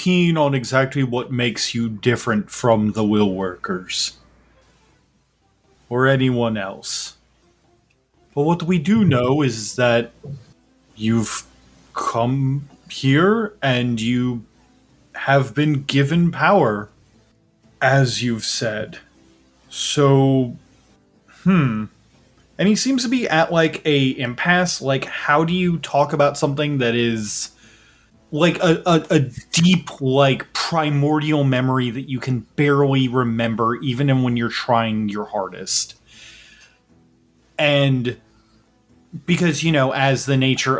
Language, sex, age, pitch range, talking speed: English, male, 20-39, 115-150 Hz, 115 wpm